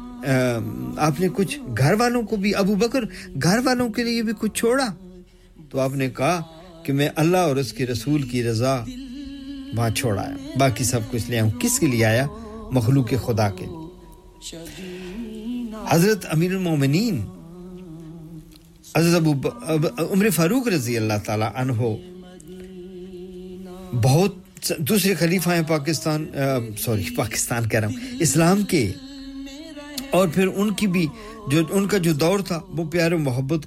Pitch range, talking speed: 135-195 Hz, 110 wpm